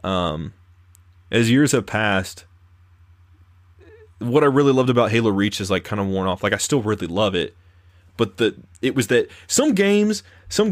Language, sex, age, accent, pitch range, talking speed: English, male, 20-39, American, 90-130 Hz, 180 wpm